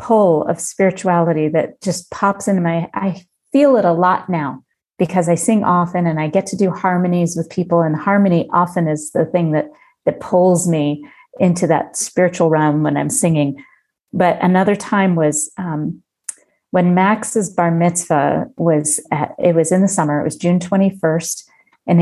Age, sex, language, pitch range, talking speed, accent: 40-59, female, English, 165-195 Hz, 175 wpm, American